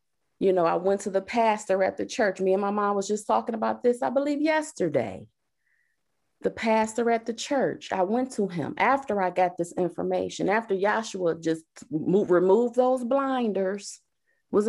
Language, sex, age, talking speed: English, female, 30-49, 180 wpm